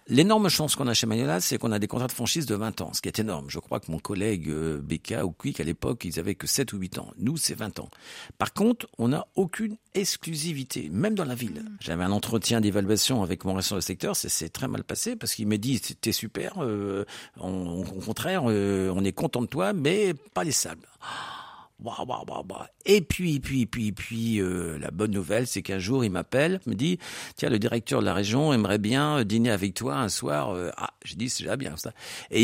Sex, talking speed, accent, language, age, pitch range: male, 245 wpm, French, French, 50-69, 95-130 Hz